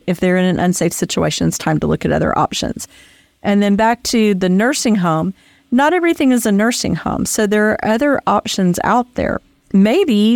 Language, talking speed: English, 195 wpm